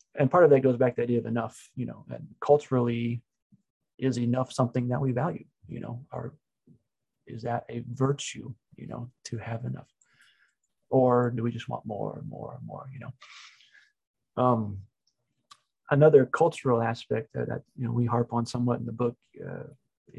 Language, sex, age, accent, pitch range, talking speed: English, male, 30-49, American, 120-140 Hz, 180 wpm